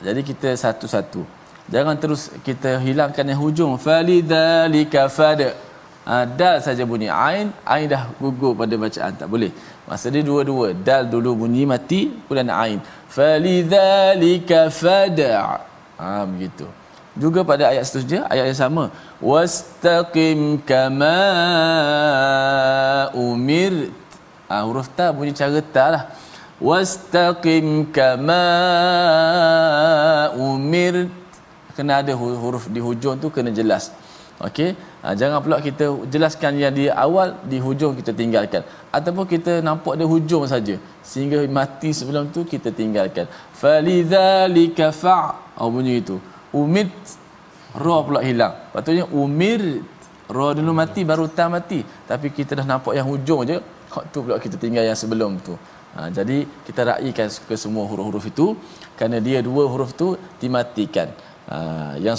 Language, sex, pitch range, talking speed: Malayalam, male, 125-165 Hz, 130 wpm